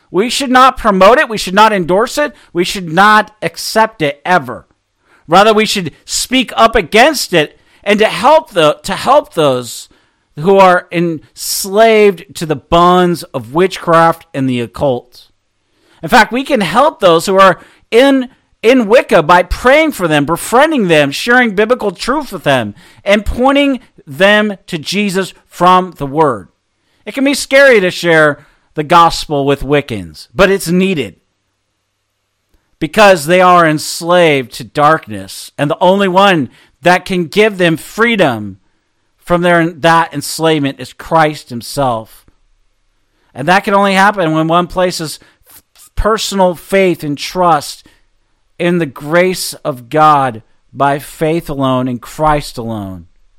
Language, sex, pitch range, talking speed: English, male, 135-200 Hz, 145 wpm